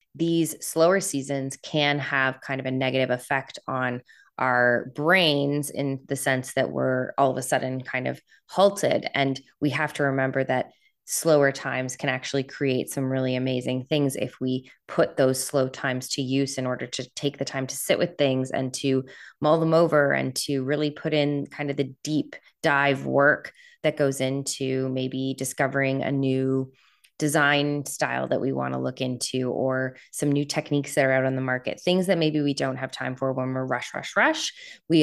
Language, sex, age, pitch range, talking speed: English, female, 20-39, 130-150 Hz, 195 wpm